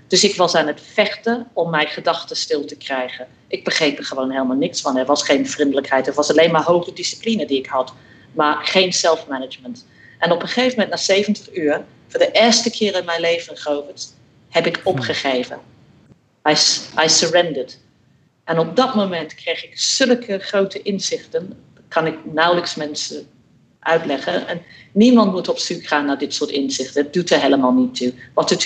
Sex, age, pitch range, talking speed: female, 50-69, 145-195 Hz, 185 wpm